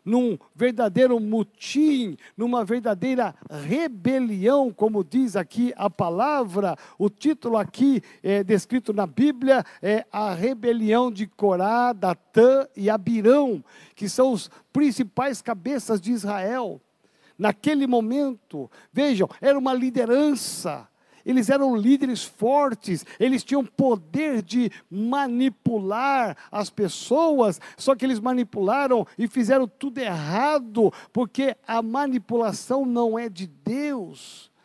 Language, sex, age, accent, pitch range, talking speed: Portuguese, male, 60-79, Brazilian, 205-260 Hz, 110 wpm